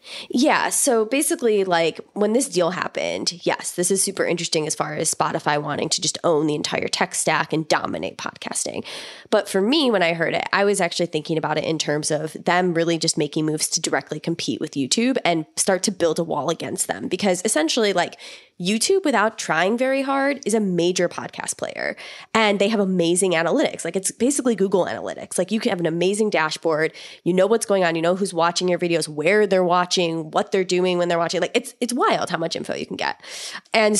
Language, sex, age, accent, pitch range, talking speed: English, female, 20-39, American, 170-215 Hz, 220 wpm